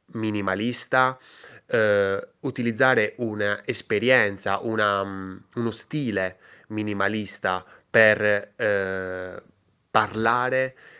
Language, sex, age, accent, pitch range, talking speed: Italian, male, 20-39, native, 100-120 Hz, 55 wpm